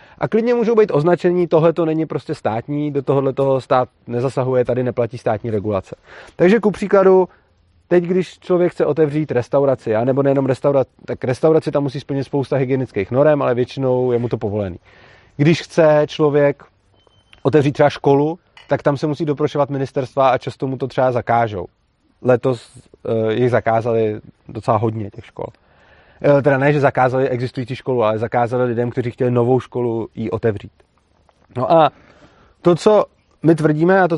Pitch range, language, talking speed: 125-160 Hz, Czech, 165 wpm